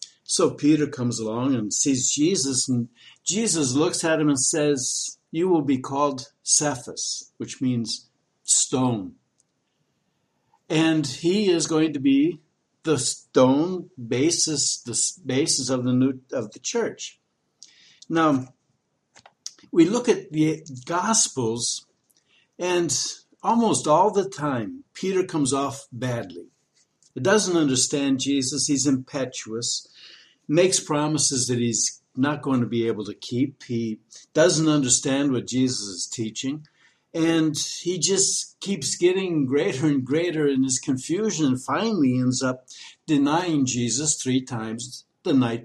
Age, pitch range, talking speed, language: 60-79, 130-165 Hz, 135 wpm, English